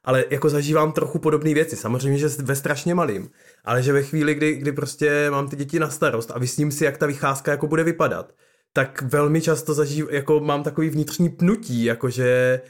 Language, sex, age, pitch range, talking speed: Czech, male, 20-39, 140-155 Hz, 200 wpm